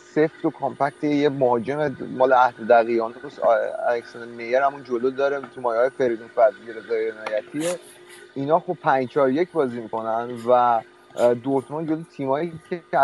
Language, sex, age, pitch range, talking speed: Persian, male, 30-49, 120-145 Hz, 145 wpm